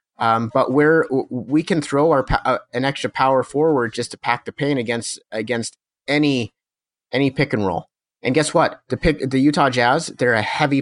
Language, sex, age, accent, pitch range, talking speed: English, male, 30-49, American, 125-155 Hz, 195 wpm